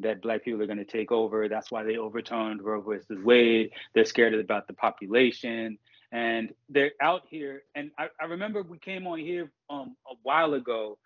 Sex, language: male, English